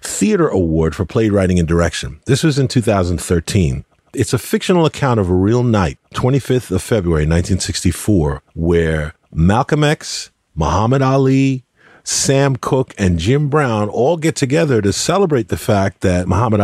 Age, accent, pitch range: 40-59, American, 90-130 Hz